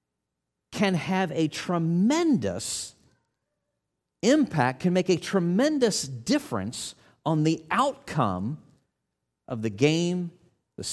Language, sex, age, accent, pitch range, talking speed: English, male, 40-59, American, 115-190 Hz, 95 wpm